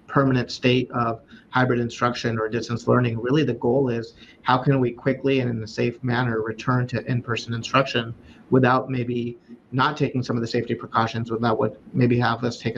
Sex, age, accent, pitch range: male, 30-49, American, 115-125 Hz